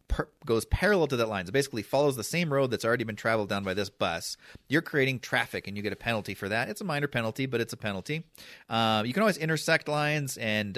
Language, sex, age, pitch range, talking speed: English, male, 30-49, 100-135 Hz, 255 wpm